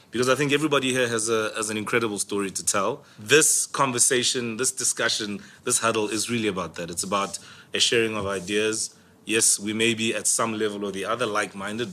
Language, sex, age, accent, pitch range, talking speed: English, male, 30-49, South African, 105-120 Hz, 195 wpm